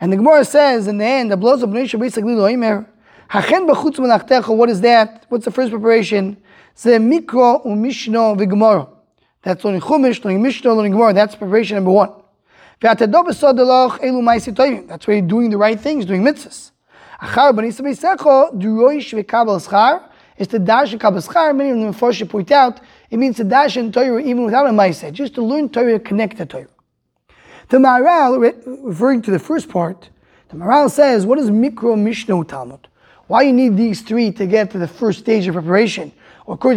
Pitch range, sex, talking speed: 205-255 Hz, male, 125 wpm